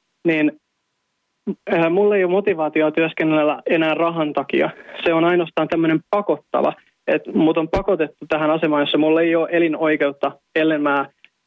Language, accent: Finnish, native